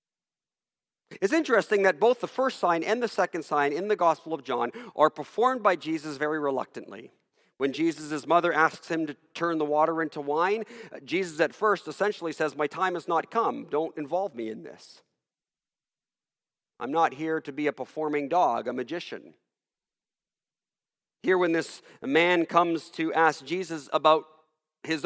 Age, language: 40-59, English